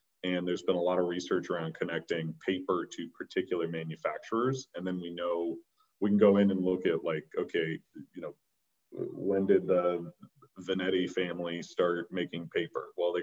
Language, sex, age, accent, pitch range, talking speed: English, male, 30-49, American, 85-100 Hz, 170 wpm